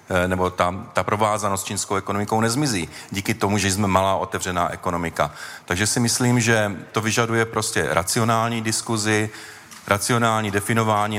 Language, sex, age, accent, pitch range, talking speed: Czech, male, 40-59, native, 95-110 Hz, 135 wpm